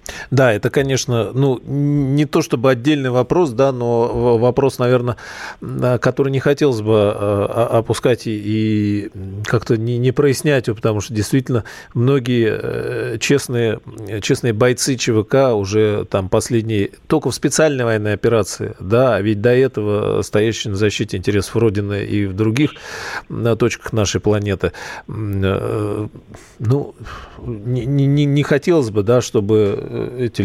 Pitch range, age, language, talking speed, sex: 105-130 Hz, 40-59, Russian, 120 wpm, male